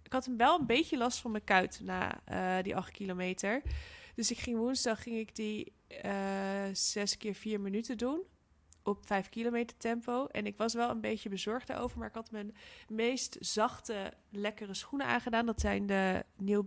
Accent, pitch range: Dutch, 195-240 Hz